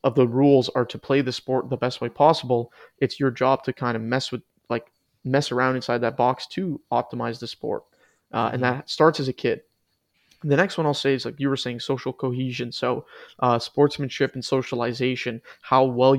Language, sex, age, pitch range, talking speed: English, male, 20-39, 125-135 Hz, 210 wpm